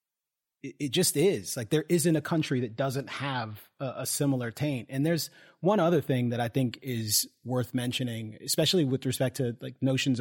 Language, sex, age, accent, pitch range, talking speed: English, male, 30-49, American, 120-140 Hz, 190 wpm